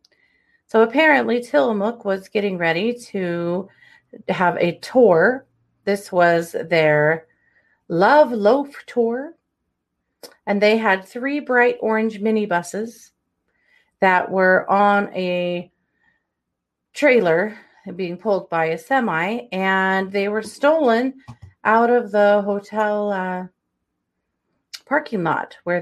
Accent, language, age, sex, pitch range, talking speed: American, English, 30-49, female, 165-240 Hz, 105 wpm